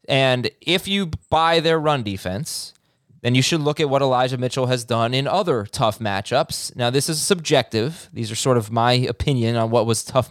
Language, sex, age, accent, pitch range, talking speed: English, male, 20-39, American, 110-150 Hz, 205 wpm